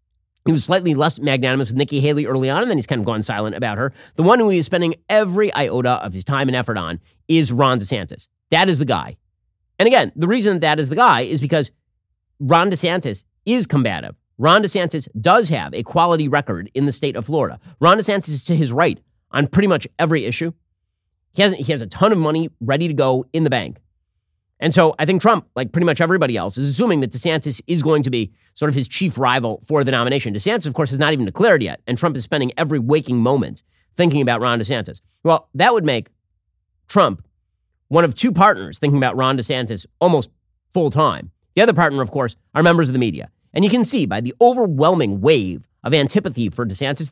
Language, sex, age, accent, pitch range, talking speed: English, male, 30-49, American, 115-165 Hz, 220 wpm